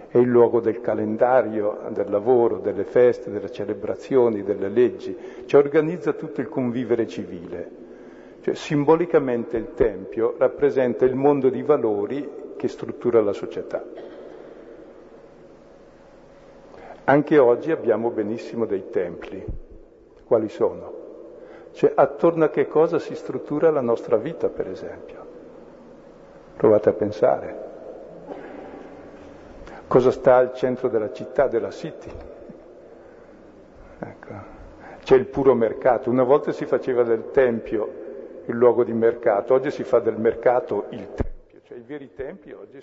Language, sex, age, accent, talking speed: Italian, male, 50-69, native, 125 wpm